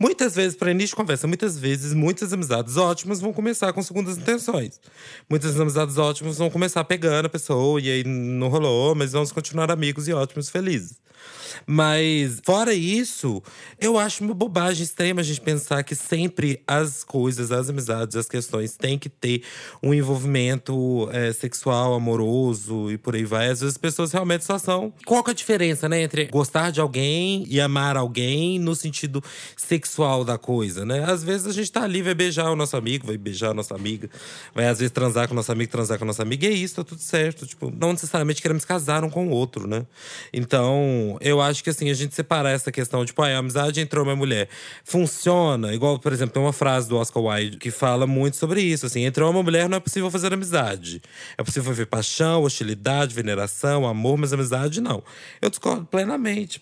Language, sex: Portuguese, male